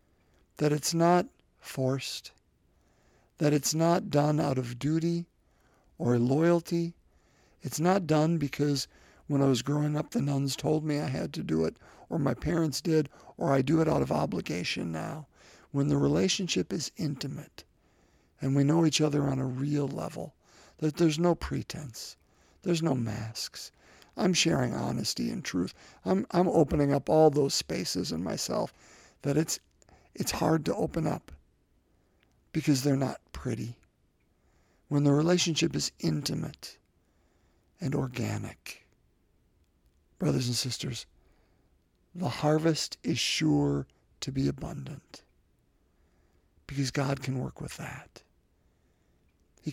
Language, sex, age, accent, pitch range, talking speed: English, male, 50-69, American, 110-160 Hz, 135 wpm